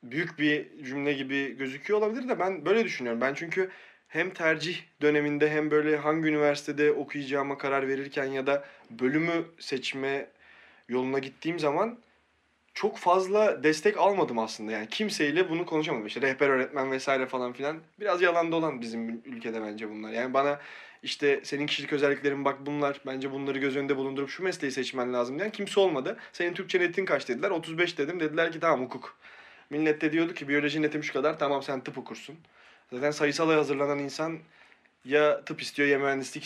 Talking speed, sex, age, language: 170 wpm, male, 20-39, Turkish